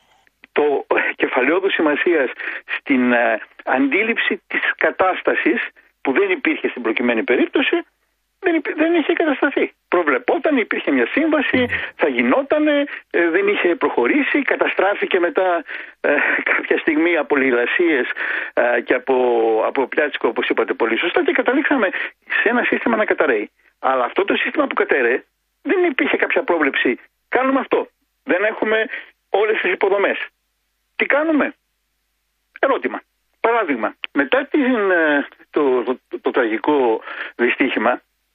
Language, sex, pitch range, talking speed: Greek, male, 230-360 Hz, 125 wpm